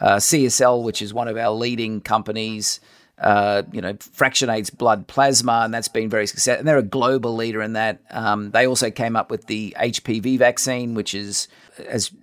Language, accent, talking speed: English, Australian, 185 wpm